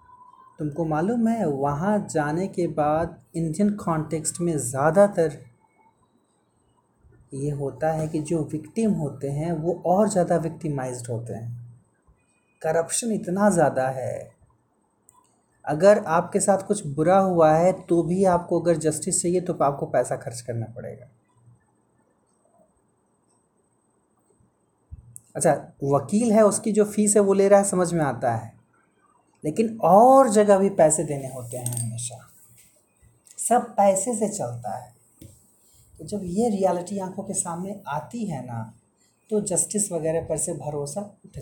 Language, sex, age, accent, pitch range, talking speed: Hindi, male, 30-49, native, 140-205 Hz, 135 wpm